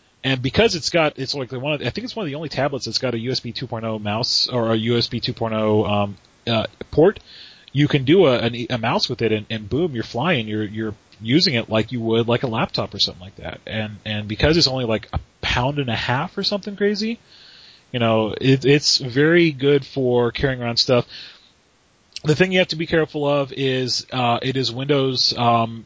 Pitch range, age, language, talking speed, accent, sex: 115-135 Hz, 30-49, English, 225 wpm, American, male